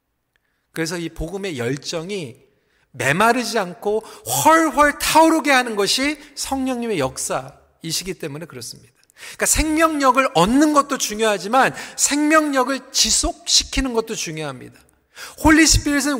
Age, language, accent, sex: 40-59, Korean, native, male